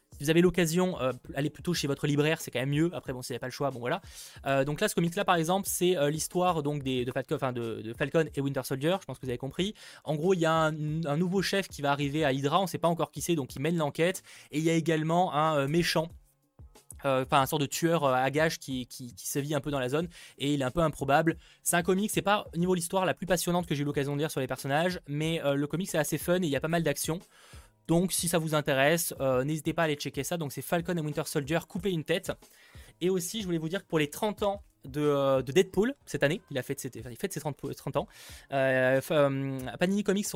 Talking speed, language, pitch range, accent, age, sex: 290 wpm, French, 140-170 Hz, French, 20-39, male